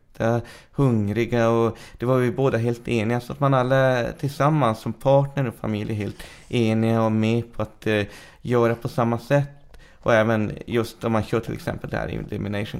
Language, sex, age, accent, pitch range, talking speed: English, male, 30-49, Swedish, 110-130 Hz, 185 wpm